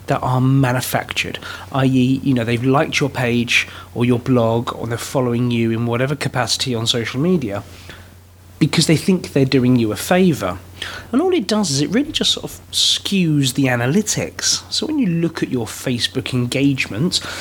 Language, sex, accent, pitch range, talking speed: English, male, British, 120-160 Hz, 180 wpm